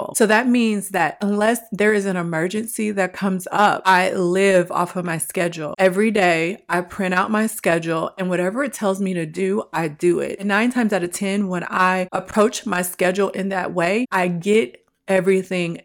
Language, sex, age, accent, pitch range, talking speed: English, female, 30-49, American, 175-210 Hz, 195 wpm